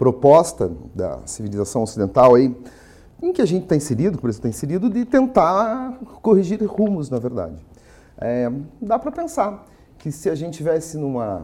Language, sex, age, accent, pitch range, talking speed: Portuguese, male, 40-59, Brazilian, 115-180 Hz, 150 wpm